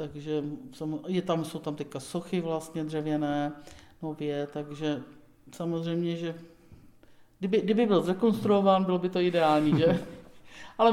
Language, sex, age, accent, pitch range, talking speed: Czech, male, 50-69, native, 130-160 Hz, 125 wpm